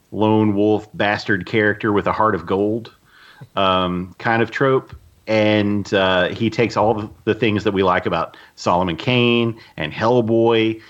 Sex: male